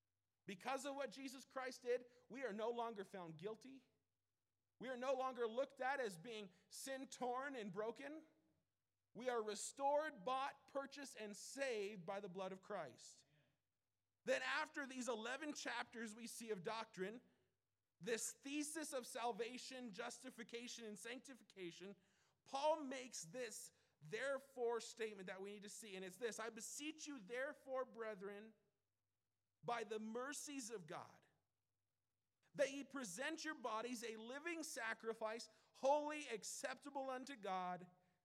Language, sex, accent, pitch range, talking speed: English, male, American, 190-260 Hz, 135 wpm